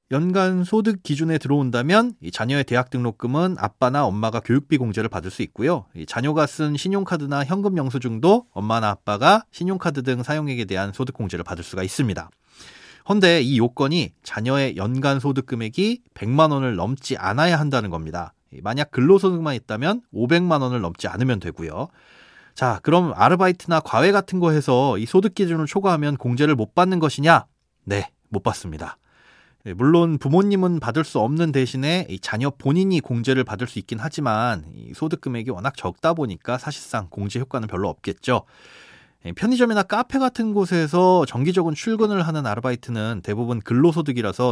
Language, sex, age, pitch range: Korean, male, 30-49, 115-170 Hz